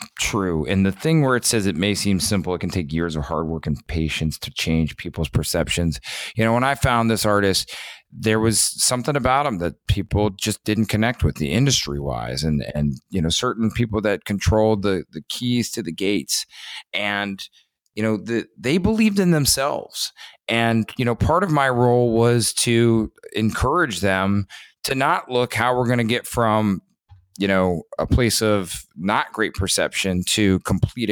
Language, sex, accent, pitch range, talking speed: English, male, American, 90-120 Hz, 185 wpm